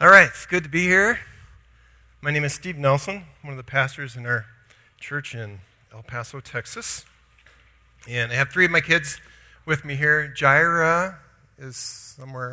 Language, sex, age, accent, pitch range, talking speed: English, male, 40-59, American, 115-145 Hz, 170 wpm